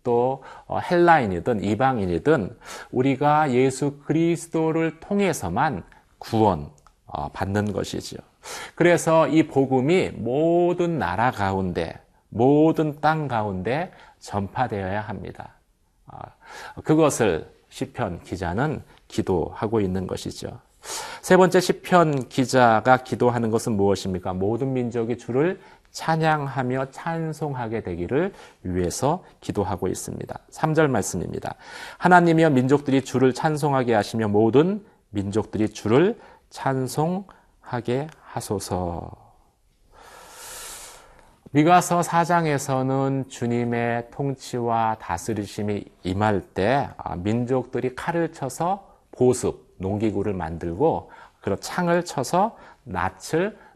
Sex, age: male, 40-59